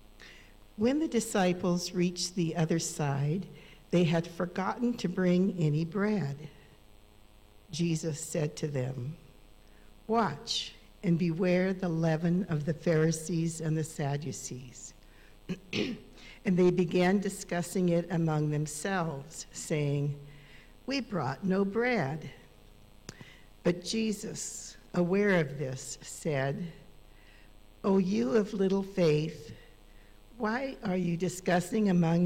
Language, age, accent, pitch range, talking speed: English, 60-79, American, 150-195 Hz, 105 wpm